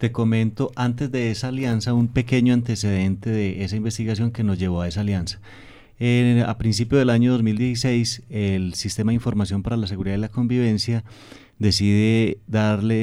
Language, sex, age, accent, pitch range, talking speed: Spanish, male, 30-49, Colombian, 105-120 Hz, 165 wpm